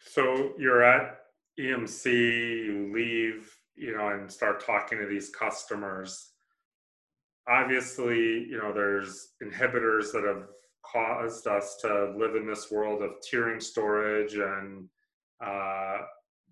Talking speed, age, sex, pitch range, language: 120 wpm, 30-49, male, 100-115 Hz, English